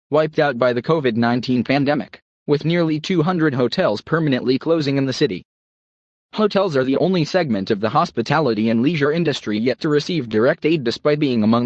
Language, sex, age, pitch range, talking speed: English, male, 20-39, 120-160 Hz, 175 wpm